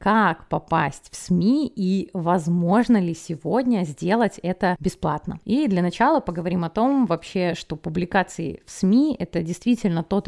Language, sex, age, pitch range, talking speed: Russian, female, 20-39, 175-220 Hz, 145 wpm